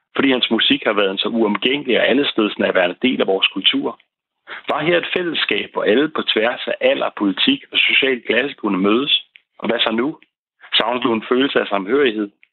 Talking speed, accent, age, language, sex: 190 wpm, native, 40-59, Danish, male